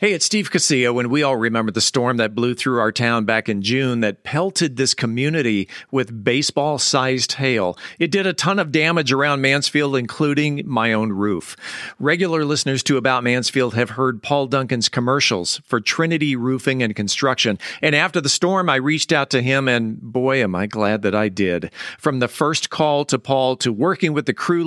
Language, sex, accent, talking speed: English, male, American, 195 wpm